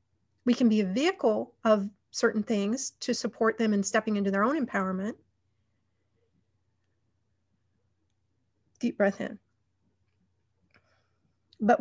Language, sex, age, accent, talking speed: English, female, 40-59, American, 105 wpm